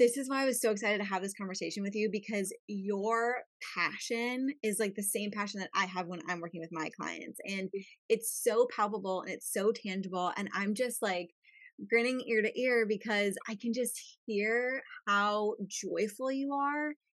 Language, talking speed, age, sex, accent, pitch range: English, 195 wpm, 20-39, female, American, 200-250 Hz